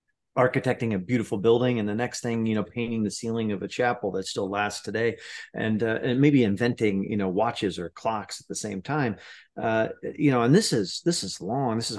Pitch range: 105-135 Hz